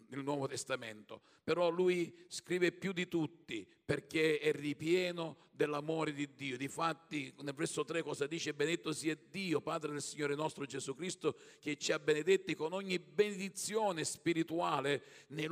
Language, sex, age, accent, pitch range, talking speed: Italian, male, 50-69, native, 145-175 Hz, 150 wpm